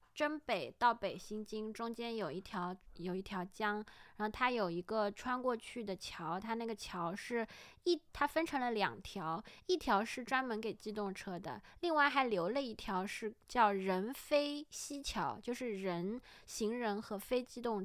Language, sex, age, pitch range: Chinese, female, 20-39, 195-245 Hz